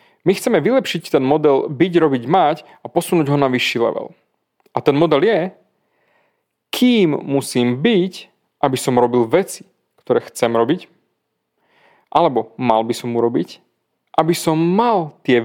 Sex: male